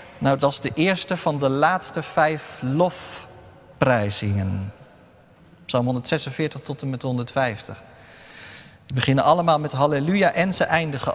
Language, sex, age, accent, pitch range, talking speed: Dutch, male, 40-59, Dutch, 110-165 Hz, 130 wpm